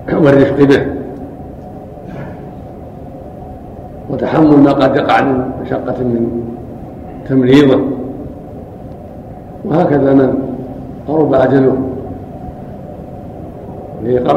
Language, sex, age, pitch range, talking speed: Arabic, male, 60-79, 125-140 Hz, 65 wpm